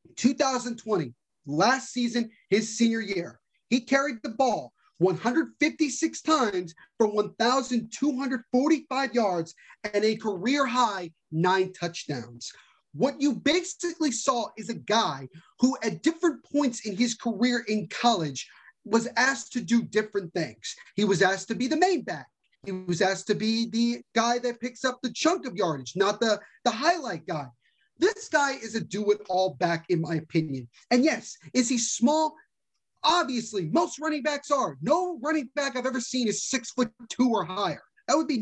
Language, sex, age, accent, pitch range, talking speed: English, male, 30-49, American, 205-270 Hz, 160 wpm